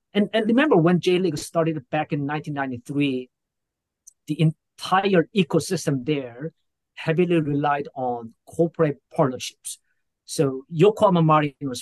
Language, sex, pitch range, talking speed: English, male, 130-160 Hz, 105 wpm